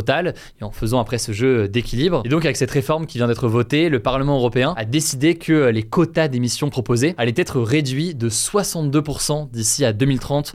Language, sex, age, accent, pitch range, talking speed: French, male, 20-39, French, 120-150 Hz, 195 wpm